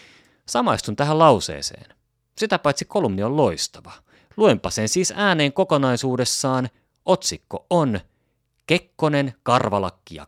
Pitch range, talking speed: 95-135 Hz, 105 wpm